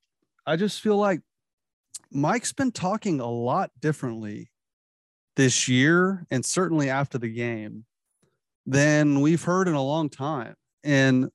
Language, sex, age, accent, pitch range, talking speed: English, male, 30-49, American, 130-160 Hz, 130 wpm